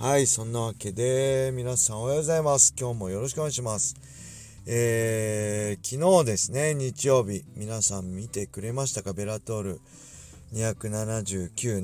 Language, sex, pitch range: Japanese, male, 100-125 Hz